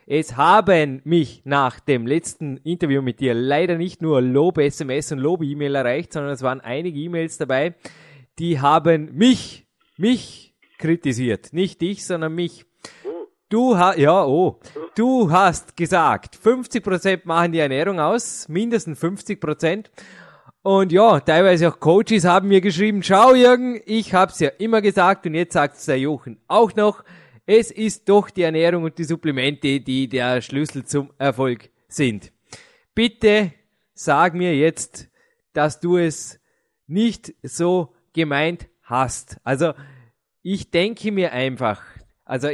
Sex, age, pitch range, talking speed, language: male, 20-39, 140-190 Hz, 135 wpm, German